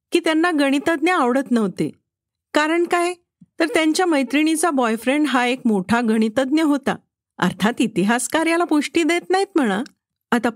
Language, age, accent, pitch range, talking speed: Marathi, 50-69, native, 235-320 Hz, 135 wpm